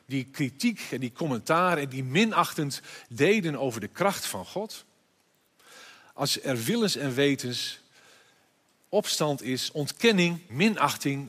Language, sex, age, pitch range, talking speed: Dutch, male, 50-69, 135-180 Hz, 120 wpm